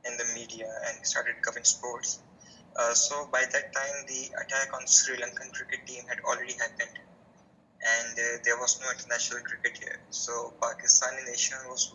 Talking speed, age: 170 wpm, 20-39